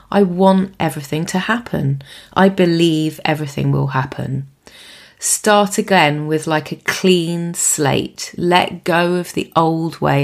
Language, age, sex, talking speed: English, 30-49, female, 135 wpm